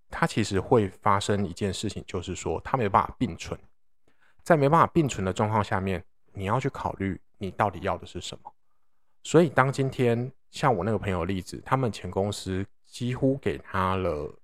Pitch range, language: 95-120 Hz, Chinese